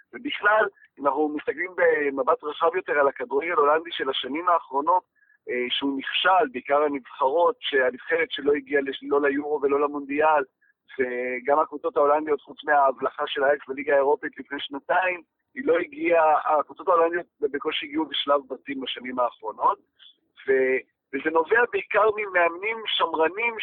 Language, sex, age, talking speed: Hebrew, male, 50-69, 120 wpm